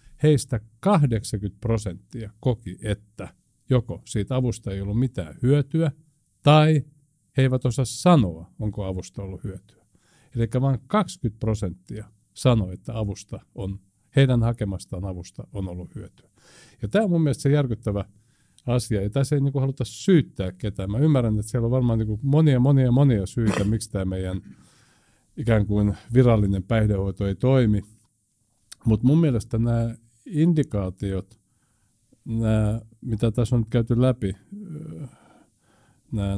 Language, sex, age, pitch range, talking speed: Finnish, male, 50-69, 100-130 Hz, 140 wpm